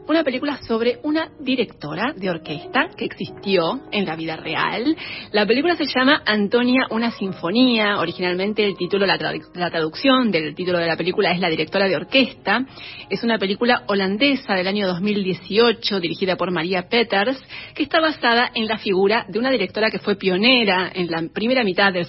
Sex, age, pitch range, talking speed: female, 30-49, 185-240 Hz, 175 wpm